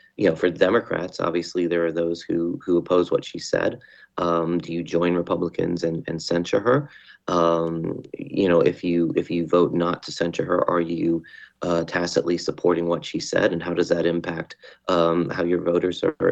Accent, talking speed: American, 195 wpm